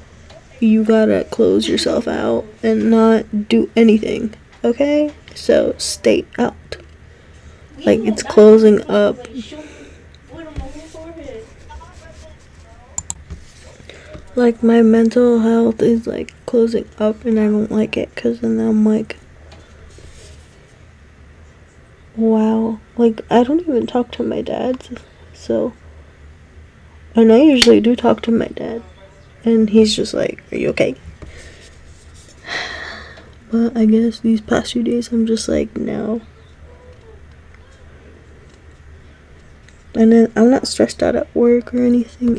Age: 20-39